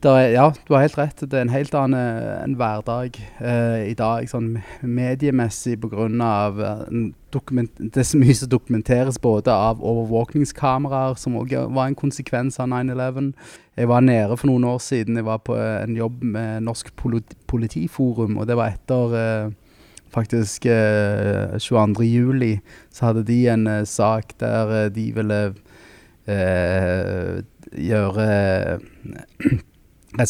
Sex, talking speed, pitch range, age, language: male, 150 wpm, 105-125 Hz, 20-39, English